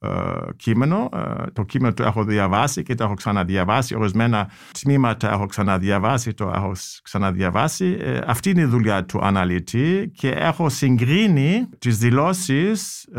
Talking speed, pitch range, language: 125 wpm, 115-160 Hz, Greek